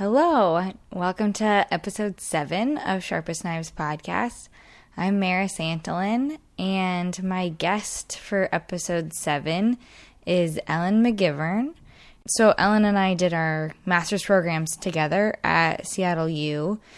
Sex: female